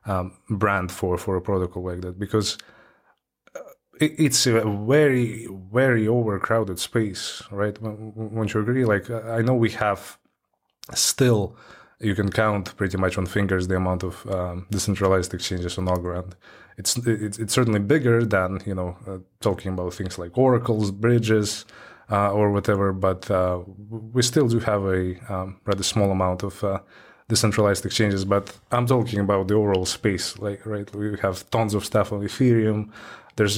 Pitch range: 95-110 Hz